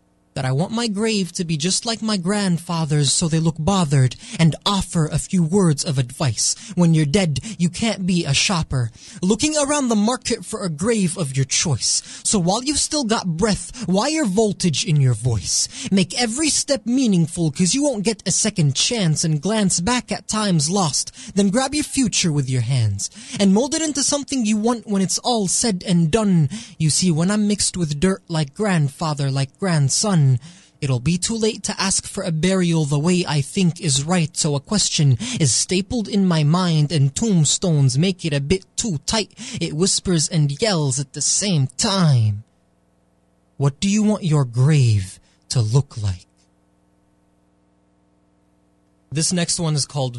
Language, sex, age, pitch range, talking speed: English, male, 20-39, 135-200 Hz, 180 wpm